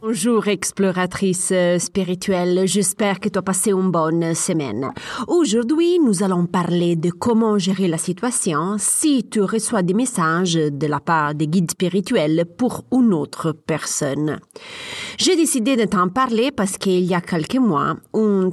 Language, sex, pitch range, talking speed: French, female, 180-245 Hz, 150 wpm